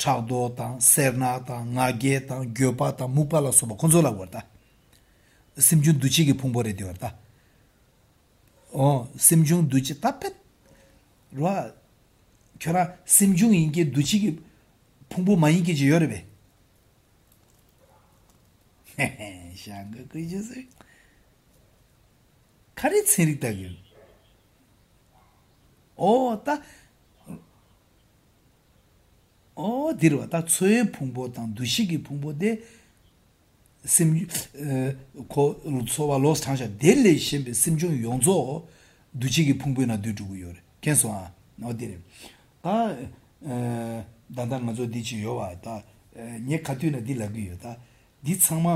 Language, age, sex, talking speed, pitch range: English, 60-79, male, 45 wpm, 115-160 Hz